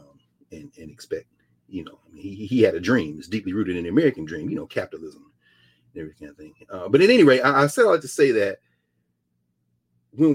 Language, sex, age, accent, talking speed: English, male, 40-59, American, 230 wpm